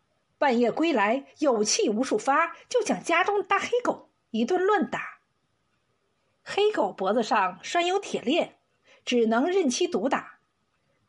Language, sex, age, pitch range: Chinese, female, 50-69, 230-380 Hz